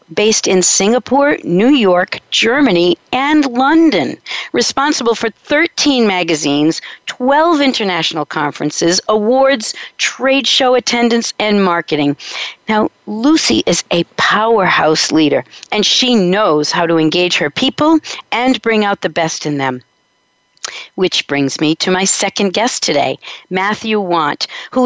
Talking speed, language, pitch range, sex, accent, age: 130 wpm, English, 185-260 Hz, female, American, 50-69